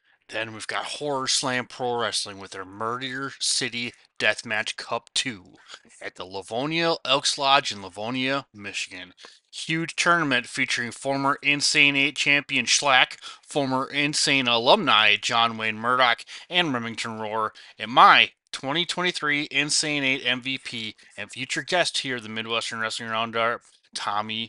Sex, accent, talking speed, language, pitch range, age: male, American, 130 wpm, English, 120-155 Hz, 20-39